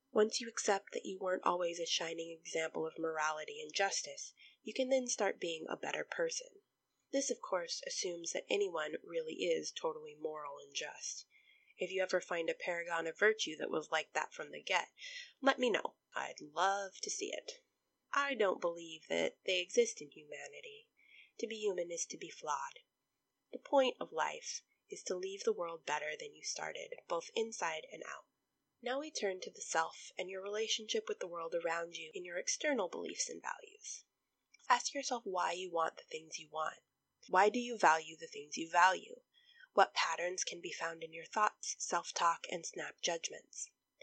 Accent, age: American, 20-39